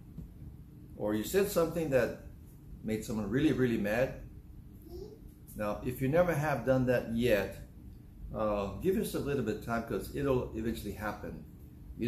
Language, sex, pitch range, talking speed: English, male, 110-155 Hz, 155 wpm